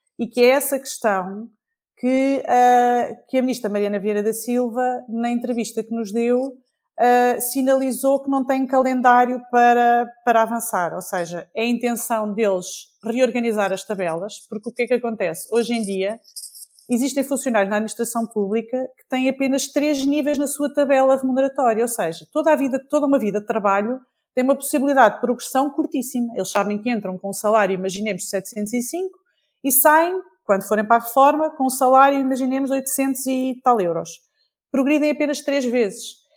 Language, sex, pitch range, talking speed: Portuguese, female, 205-265 Hz, 170 wpm